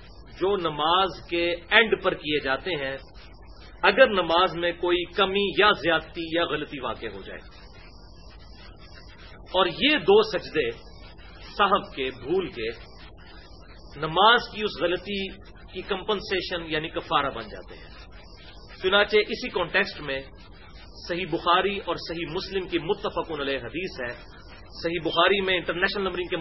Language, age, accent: English, 40-59, Indian